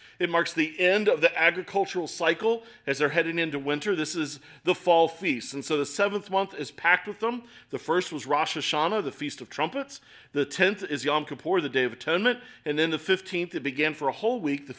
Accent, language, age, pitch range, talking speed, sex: American, English, 40-59, 145-205 Hz, 225 wpm, male